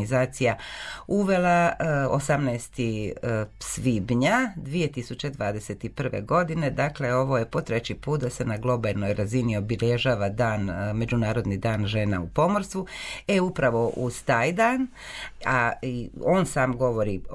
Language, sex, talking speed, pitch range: Croatian, female, 110 wpm, 115-150 Hz